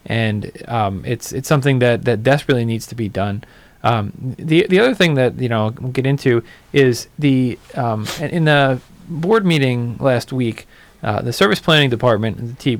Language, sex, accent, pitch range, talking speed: English, male, American, 115-140 Hz, 185 wpm